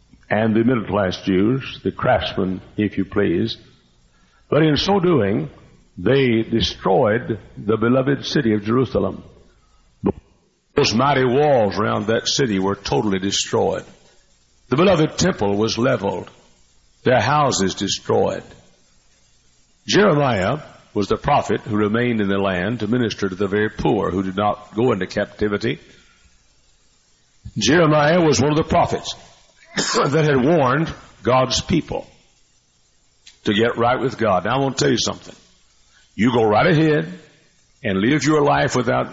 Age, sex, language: 60-79, male, English